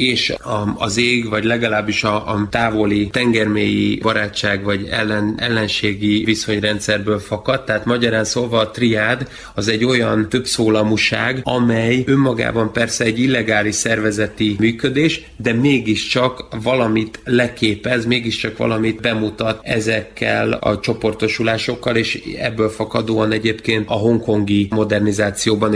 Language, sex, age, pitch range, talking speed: Hungarian, male, 30-49, 110-120 Hz, 115 wpm